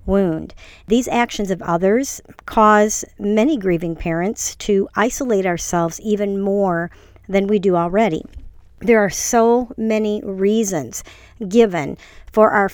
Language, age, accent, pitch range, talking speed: English, 50-69, American, 180-215 Hz, 120 wpm